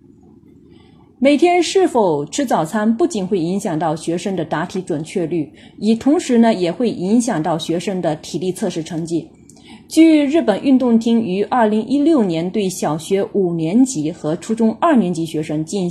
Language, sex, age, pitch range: Chinese, female, 30-49, 170-245 Hz